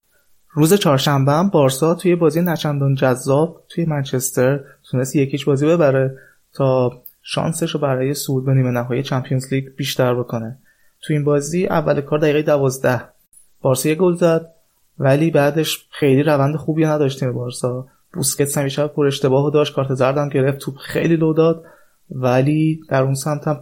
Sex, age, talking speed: male, 20-39, 150 wpm